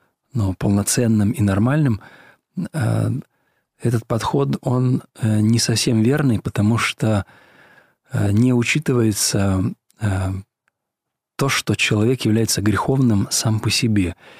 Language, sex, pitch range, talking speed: Russian, male, 105-125 Hz, 90 wpm